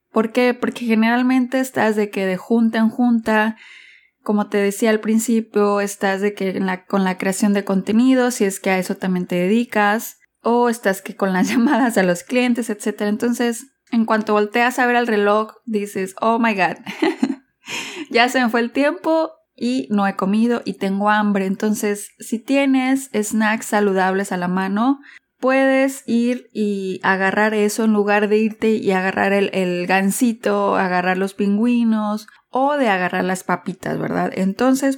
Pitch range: 200-240 Hz